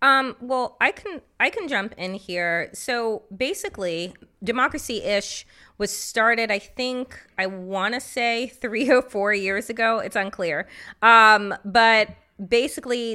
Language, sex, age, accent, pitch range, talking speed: English, female, 20-39, American, 190-240 Hz, 135 wpm